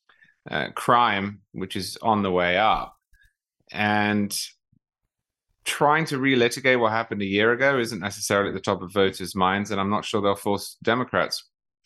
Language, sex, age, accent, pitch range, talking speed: English, male, 30-49, British, 105-135 Hz, 160 wpm